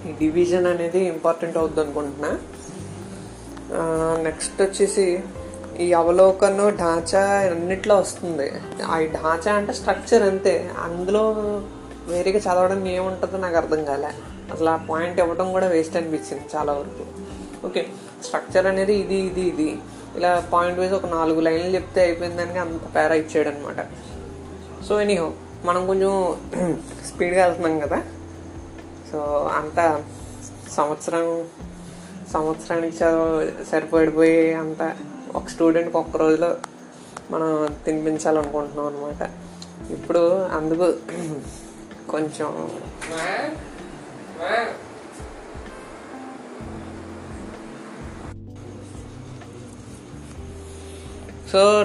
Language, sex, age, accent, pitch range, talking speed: Telugu, female, 20-39, native, 130-180 Hz, 85 wpm